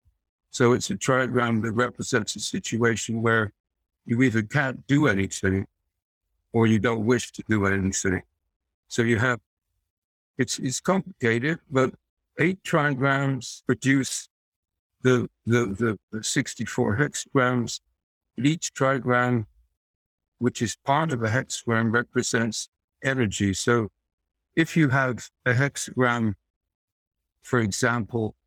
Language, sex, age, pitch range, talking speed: English, male, 60-79, 95-125 Hz, 110 wpm